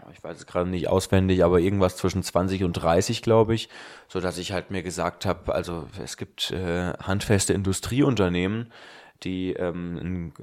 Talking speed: 155 wpm